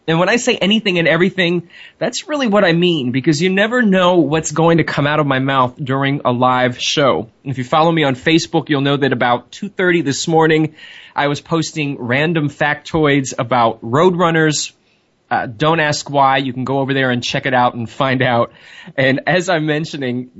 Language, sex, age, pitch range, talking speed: English, male, 20-39, 125-160 Hz, 200 wpm